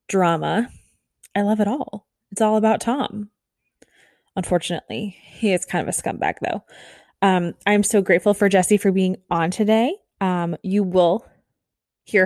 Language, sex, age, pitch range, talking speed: English, female, 20-39, 175-210 Hz, 150 wpm